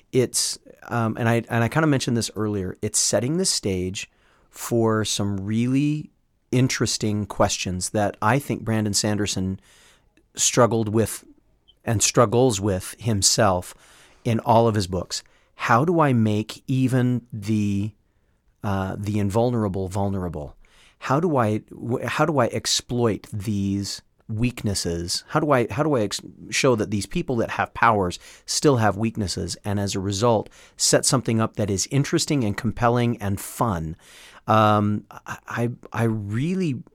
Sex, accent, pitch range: male, American, 100-120 Hz